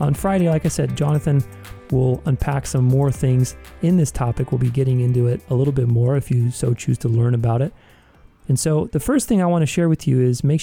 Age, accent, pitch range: 30-49, American, 120-145 Hz